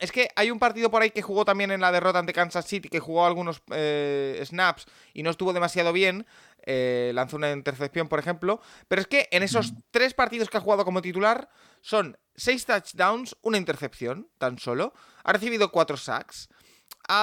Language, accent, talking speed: Spanish, Spanish, 195 wpm